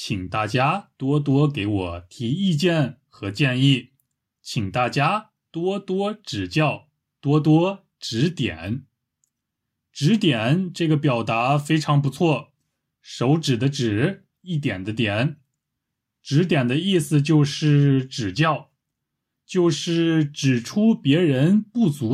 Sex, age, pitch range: male, 20-39, 125-165 Hz